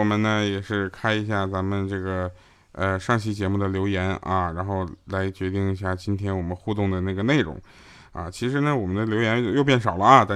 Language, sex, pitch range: Chinese, male, 100-150 Hz